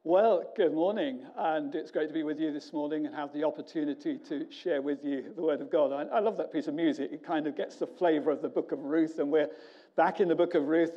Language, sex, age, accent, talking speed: English, male, 50-69, British, 275 wpm